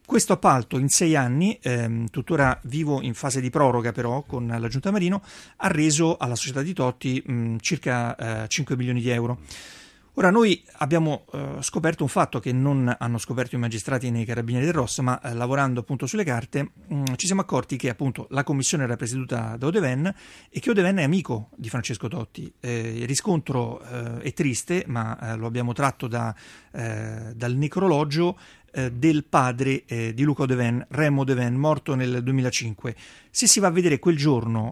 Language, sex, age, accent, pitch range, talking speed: Italian, male, 40-59, native, 120-150 Hz, 185 wpm